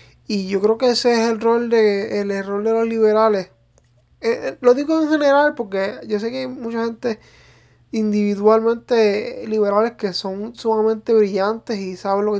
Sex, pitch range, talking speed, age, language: male, 195-235 Hz, 175 wpm, 20-39, English